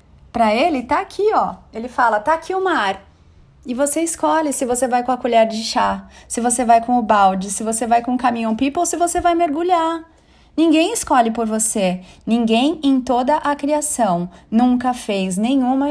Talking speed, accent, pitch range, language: 190 wpm, Brazilian, 230-310 Hz, Portuguese